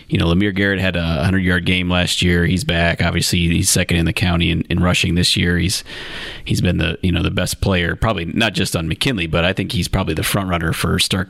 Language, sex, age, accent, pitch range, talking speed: English, male, 30-49, American, 85-105 Hz, 255 wpm